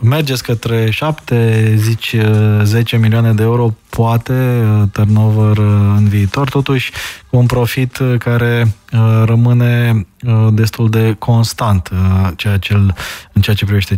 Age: 20-39